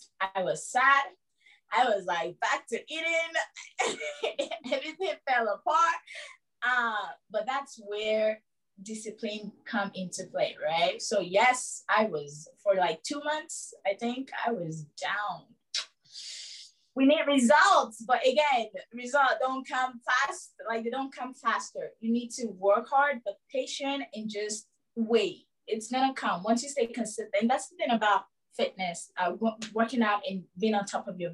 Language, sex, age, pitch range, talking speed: English, female, 20-39, 205-265 Hz, 155 wpm